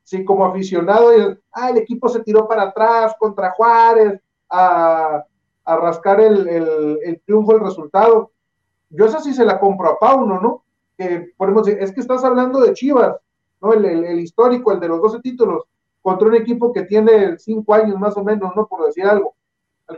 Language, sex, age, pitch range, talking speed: Spanish, male, 40-59, 180-230 Hz, 195 wpm